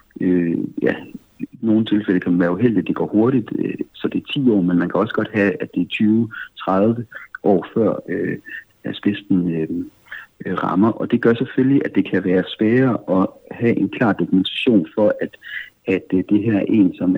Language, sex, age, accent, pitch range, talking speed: Danish, male, 60-79, native, 95-115 Hz, 205 wpm